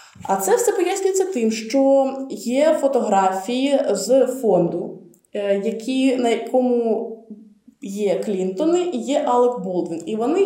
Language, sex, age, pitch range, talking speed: Russian, female, 20-39, 200-255 Hz, 120 wpm